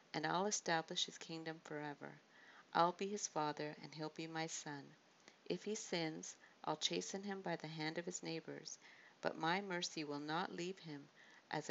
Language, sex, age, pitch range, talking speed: English, female, 50-69, 150-175 Hz, 180 wpm